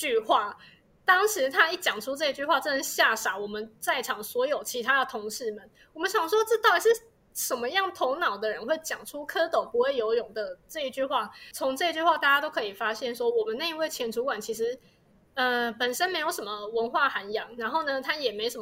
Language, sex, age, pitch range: Chinese, female, 20-39, 245-375 Hz